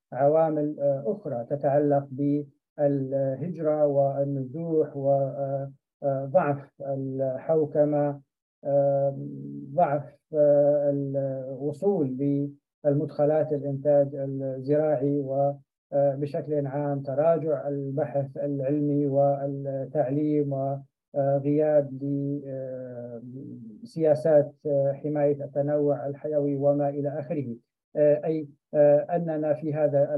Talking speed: 60 wpm